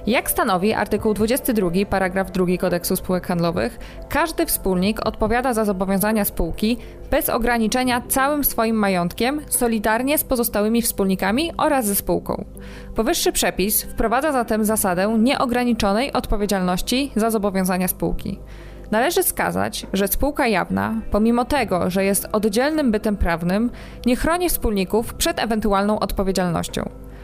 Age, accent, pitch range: 20-39, native, 185-240 Hz